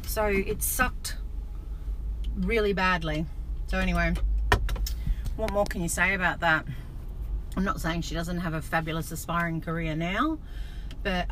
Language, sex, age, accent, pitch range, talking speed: English, female, 40-59, Australian, 170-215 Hz, 140 wpm